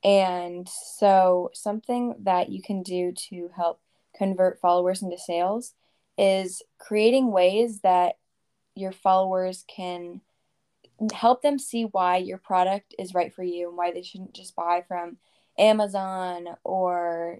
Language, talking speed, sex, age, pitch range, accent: English, 135 wpm, female, 10-29, 180-205 Hz, American